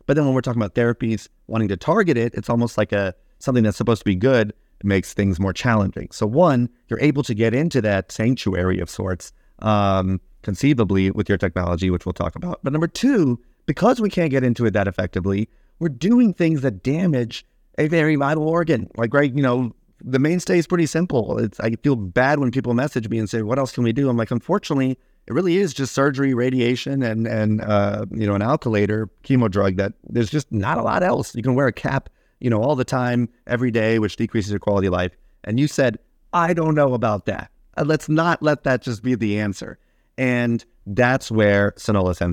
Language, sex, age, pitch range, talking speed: English, male, 30-49, 100-135 Hz, 215 wpm